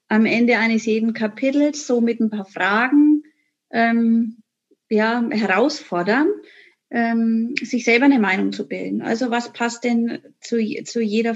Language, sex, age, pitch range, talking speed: German, female, 30-49, 210-250 Hz, 145 wpm